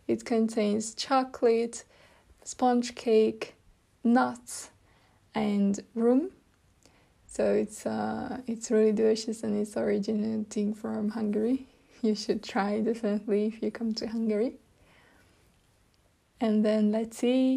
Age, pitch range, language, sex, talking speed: 20-39, 205-235 Hz, Hungarian, female, 110 wpm